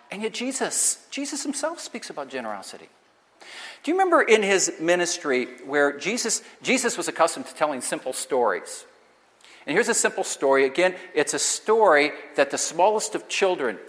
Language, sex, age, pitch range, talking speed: English, male, 50-69, 160-235 Hz, 160 wpm